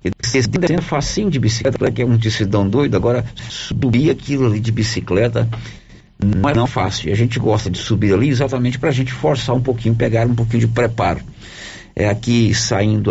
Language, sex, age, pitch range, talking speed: Portuguese, male, 50-69, 95-125 Hz, 195 wpm